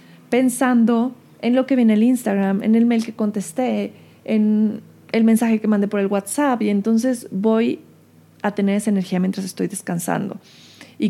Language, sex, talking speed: Spanish, female, 170 wpm